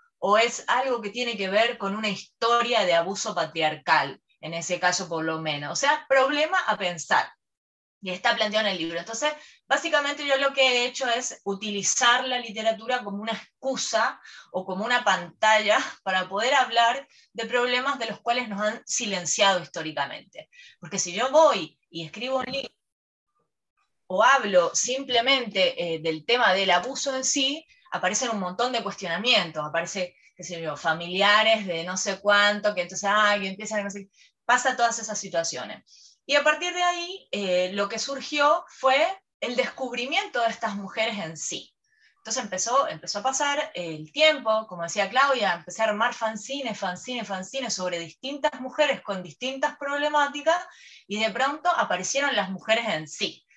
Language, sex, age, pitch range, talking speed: Spanish, female, 20-39, 185-265 Hz, 165 wpm